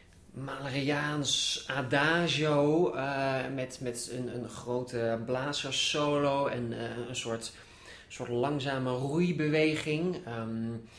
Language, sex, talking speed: English, male, 95 wpm